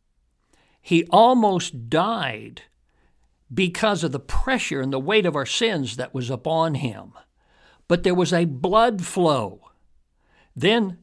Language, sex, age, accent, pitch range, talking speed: English, male, 60-79, American, 135-185 Hz, 130 wpm